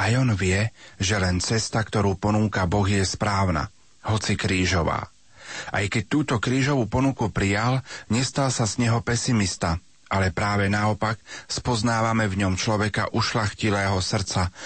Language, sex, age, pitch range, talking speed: Slovak, male, 40-59, 95-115 Hz, 135 wpm